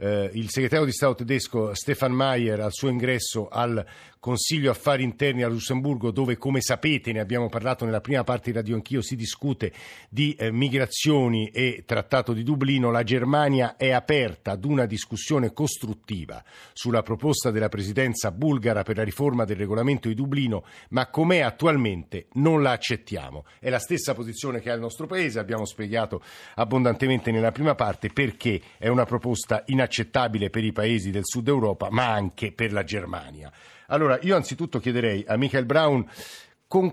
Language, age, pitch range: Italian, 50-69, 110-135 Hz